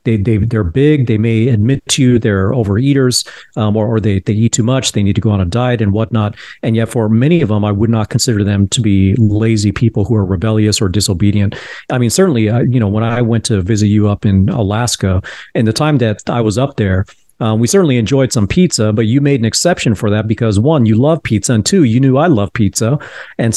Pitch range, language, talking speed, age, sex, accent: 105-125 Hz, English, 245 wpm, 40-59, male, American